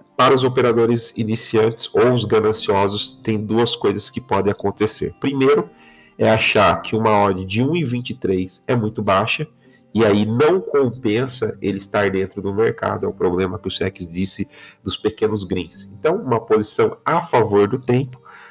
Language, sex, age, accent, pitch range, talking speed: Portuguese, male, 40-59, Brazilian, 100-115 Hz, 165 wpm